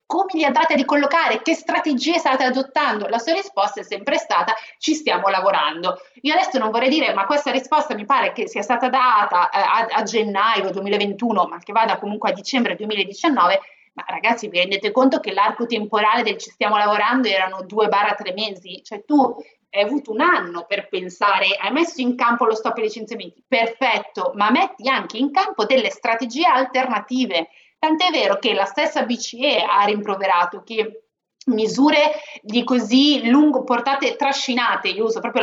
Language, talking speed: Italian, 175 wpm